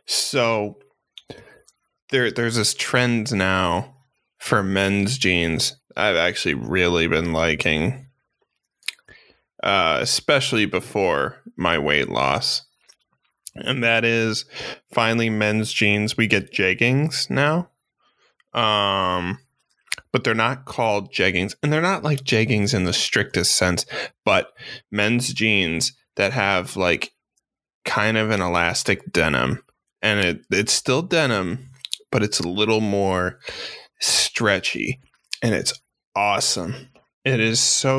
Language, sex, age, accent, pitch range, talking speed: English, male, 20-39, American, 95-130 Hz, 115 wpm